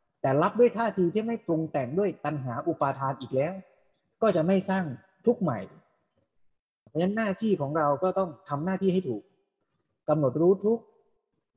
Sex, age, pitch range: male, 20-39, 140-185 Hz